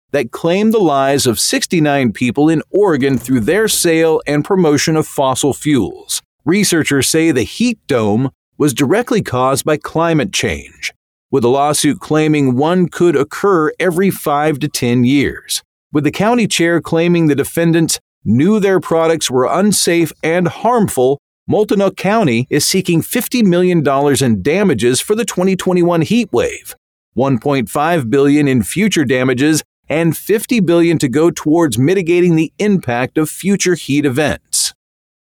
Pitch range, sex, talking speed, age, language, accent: 140-180 Hz, male, 145 wpm, 40-59, English, American